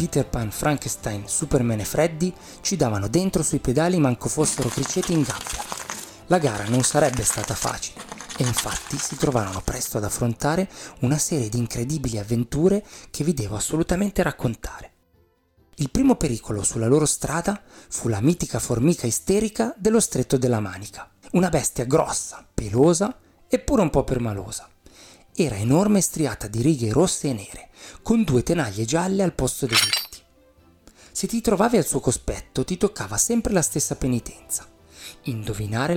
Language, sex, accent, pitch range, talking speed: Italian, male, native, 115-170 Hz, 150 wpm